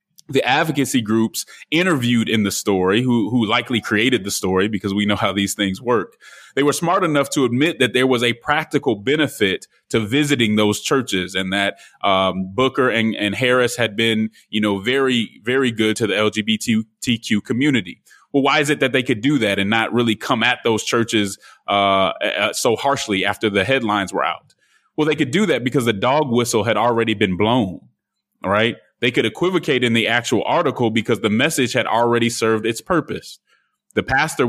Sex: male